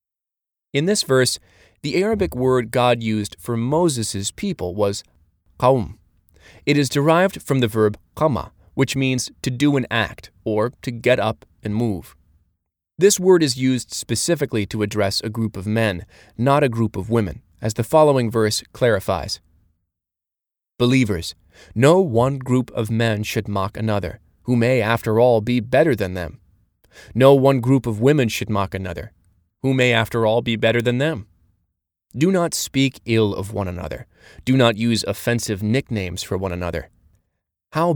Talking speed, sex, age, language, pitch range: 160 wpm, male, 30-49, English, 95-125 Hz